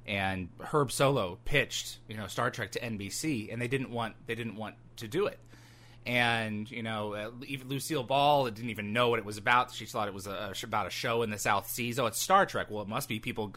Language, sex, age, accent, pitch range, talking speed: English, male, 20-39, American, 110-135 Hz, 235 wpm